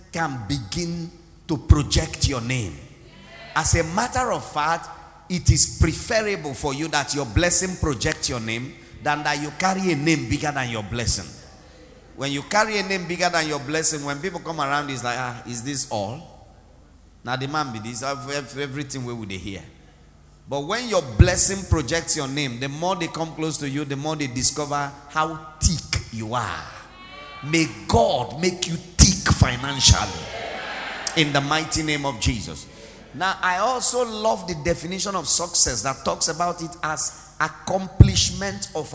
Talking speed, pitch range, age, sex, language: 170 wpm, 125-175 Hz, 40-59, male, English